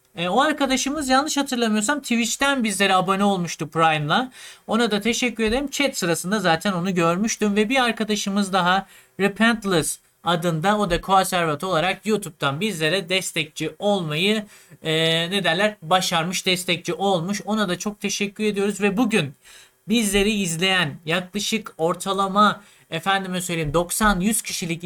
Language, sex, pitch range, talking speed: Turkish, male, 165-215 Hz, 130 wpm